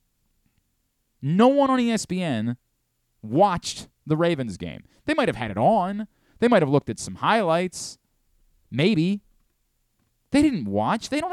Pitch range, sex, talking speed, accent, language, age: 130-190 Hz, male, 145 wpm, American, English, 30-49